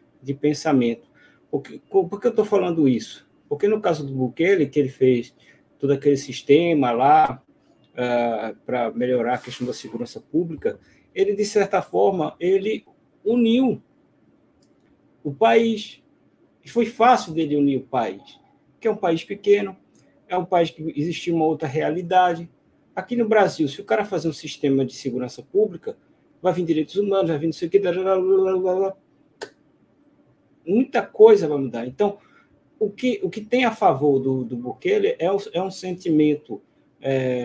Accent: Brazilian